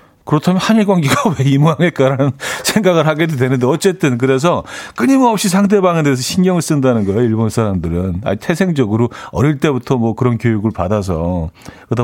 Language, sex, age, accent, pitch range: Korean, male, 40-59, native, 105-145 Hz